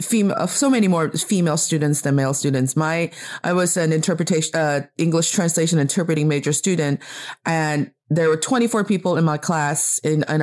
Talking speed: 175 wpm